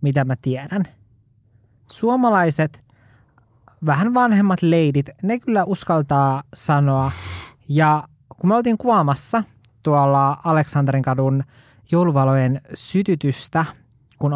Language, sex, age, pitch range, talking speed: Finnish, male, 20-39, 135-170 Hz, 90 wpm